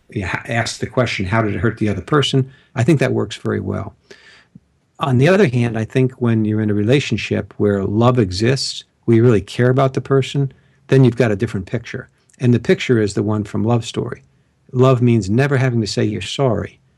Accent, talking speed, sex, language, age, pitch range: American, 210 wpm, male, English, 60-79, 105-130 Hz